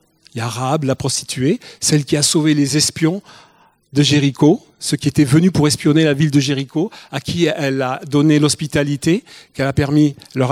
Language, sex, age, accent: French, male, 40-59, French